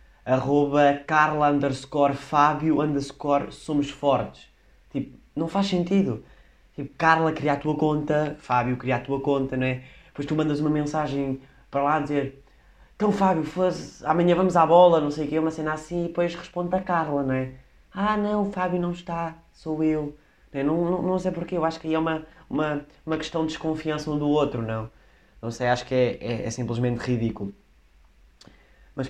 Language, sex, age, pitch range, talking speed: Portuguese, male, 20-39, 120-155 Hz, 180 wpm